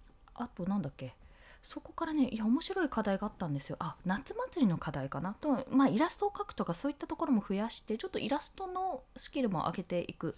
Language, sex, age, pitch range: Japanese, female, 20-39, 160-260 Hz